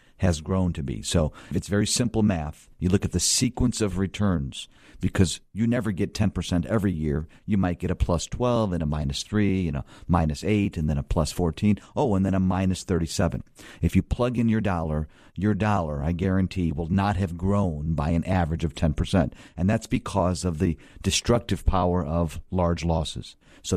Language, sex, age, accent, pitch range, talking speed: English, male, 50-69, American, 85-105 Hz, 195 wpm